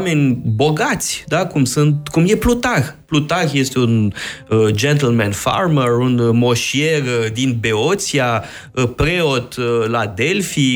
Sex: male